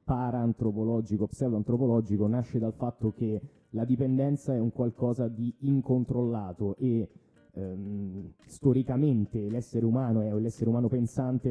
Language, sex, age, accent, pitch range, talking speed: Italian, male, 20-39, native, 110-140 Hz, 115 wpm